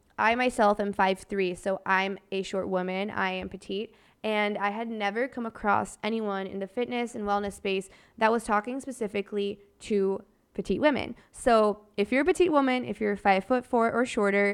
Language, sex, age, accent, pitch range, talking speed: English, female, 20-39, American, 195-225 Hz, 180 wpm